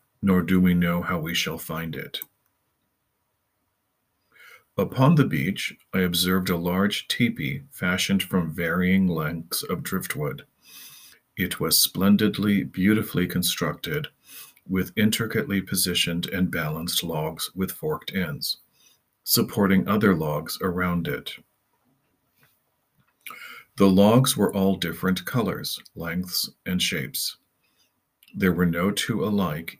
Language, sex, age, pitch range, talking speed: English, male, 40-59, 90-100 Hz, 115 wpm